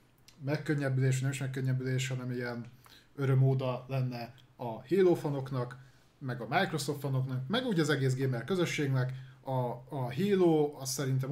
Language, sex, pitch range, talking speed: Hungarian, male, 130-150 Hz, 140 wpm